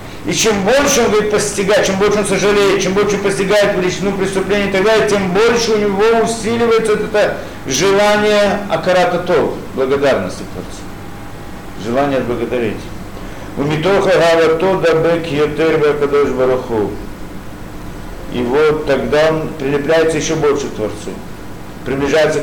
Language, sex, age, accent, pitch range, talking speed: Russian, male, 50-69, native, 135-205 Hz, 125 wpm